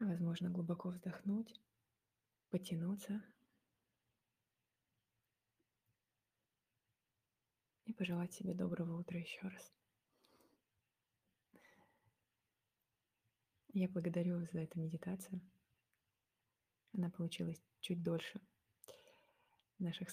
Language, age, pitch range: Russian, 20-39, 160-190 Hz